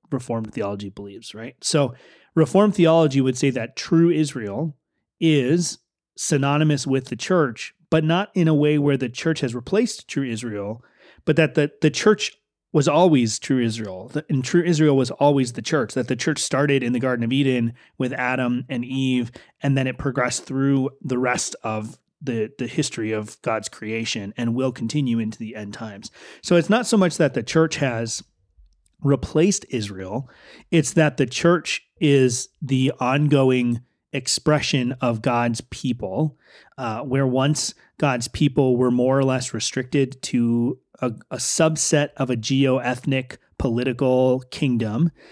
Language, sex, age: English, male, 30-49